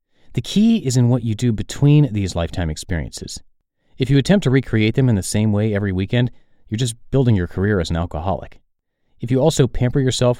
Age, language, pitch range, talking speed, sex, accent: 30-49, English, 90-125 Hz, 210 wpm, male, American